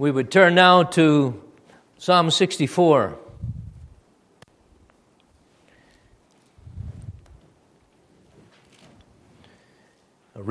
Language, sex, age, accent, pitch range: English, male, 50-69, American, 110-155 Hz